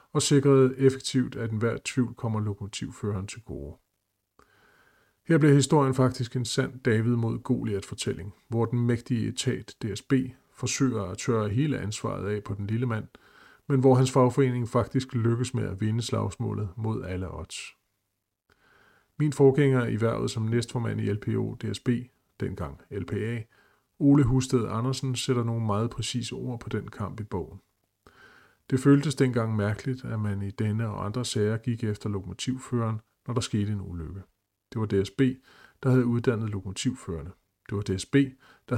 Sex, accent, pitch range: male, native, 105-130 Hz